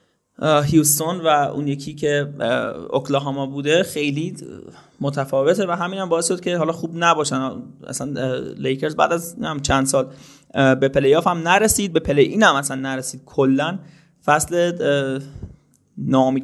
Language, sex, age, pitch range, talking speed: Persian, male, 20-39, 145-175 Hz, 135 wpm